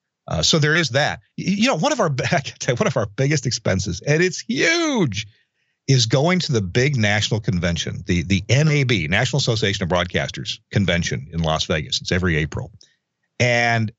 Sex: male